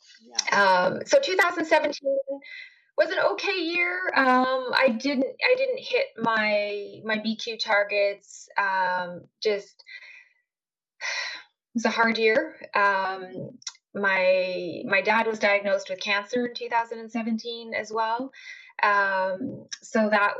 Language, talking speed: English, 115 wpm